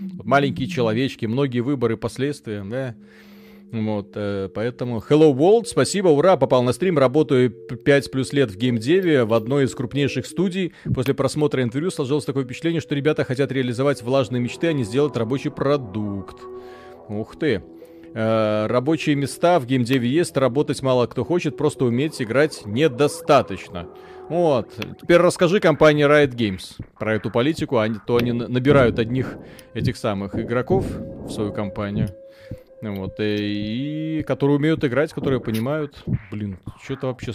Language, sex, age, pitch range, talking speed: Russian, male, 30-49, 115-150 Hz, 220 wpm